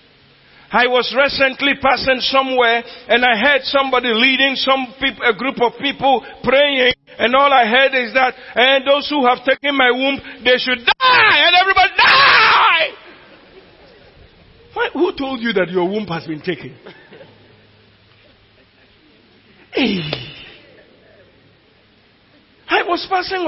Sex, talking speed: male, 125 wpm